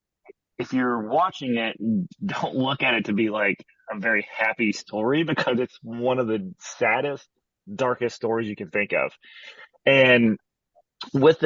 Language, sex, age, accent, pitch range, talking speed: English, male, 30-49, American, 105-130 Hz, 150 wpm